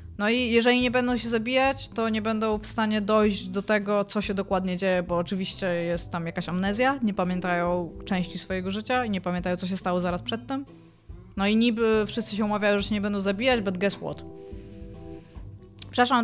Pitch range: 190-225 Hz